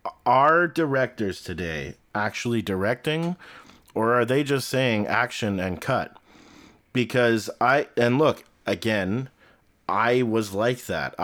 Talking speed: 115 wpm